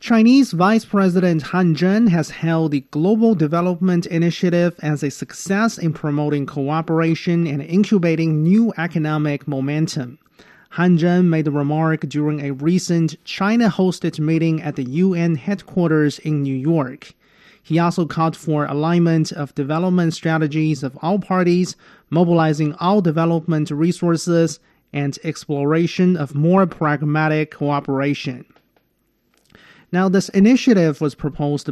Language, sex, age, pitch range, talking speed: English, male, 30-49, 150-180 Hz, 125 wpm